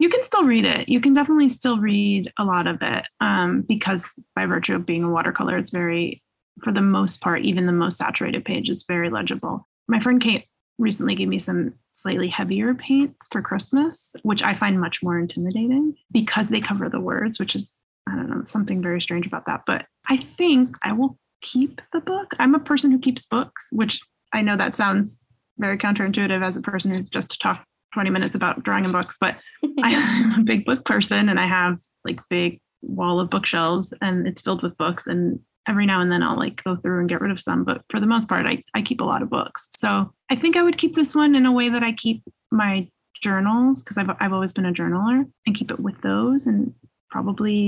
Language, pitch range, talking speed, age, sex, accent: English, 190-255 Hz, 225 wpm, 20-39, female, American